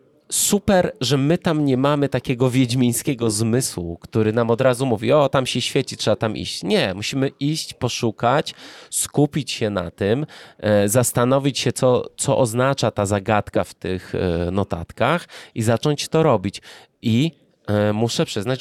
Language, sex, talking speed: Polish, male, 150 wpm